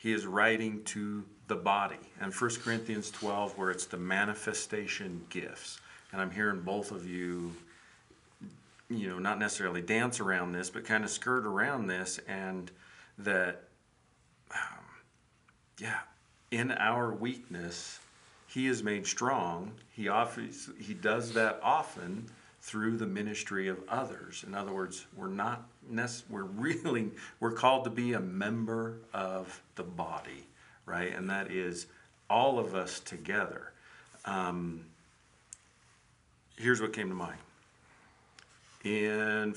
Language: English